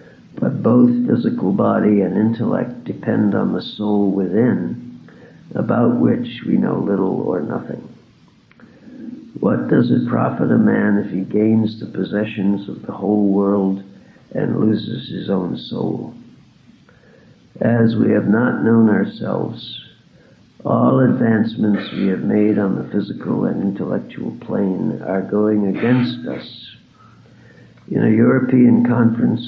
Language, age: English, 60-79